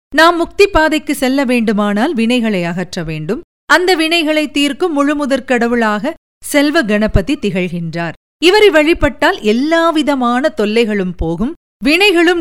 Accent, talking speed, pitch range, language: native, 105 wpm, 225-310 Hz, Tamil